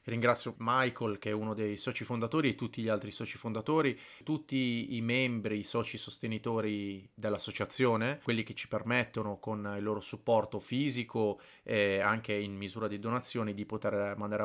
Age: 30-49